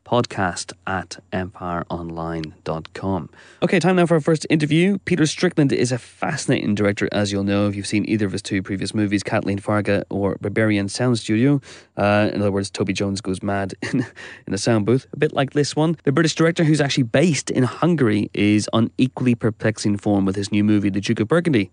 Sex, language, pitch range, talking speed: male, English, 100-120 Hz, 200 wpm